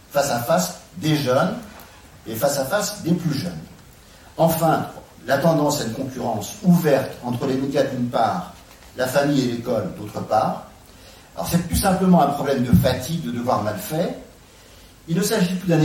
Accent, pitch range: French, 125-170 Hz